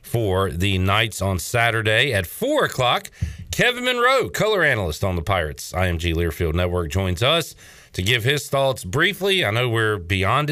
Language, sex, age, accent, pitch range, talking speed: English, male, 40-59, American, 95-140 Hz, 165 wpm